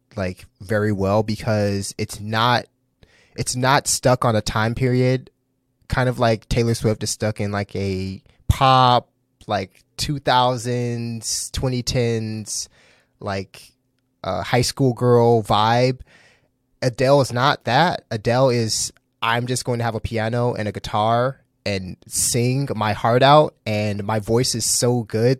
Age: 20-39